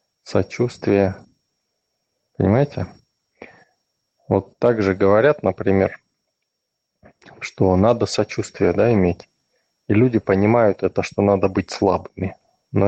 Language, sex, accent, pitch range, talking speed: Russian, male, native, 95-105 Hz, 100 wpm